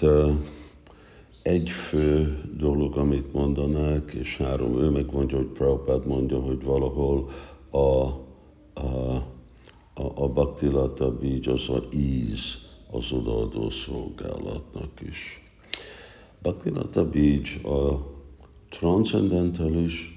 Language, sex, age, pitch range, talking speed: Hungarian, male, 60-79, 70-80 Hz, 90 wpm